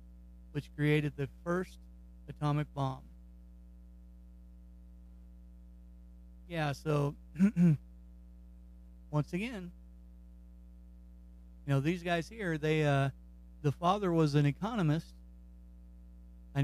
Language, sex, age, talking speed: English, male, 40-59, 85 wpm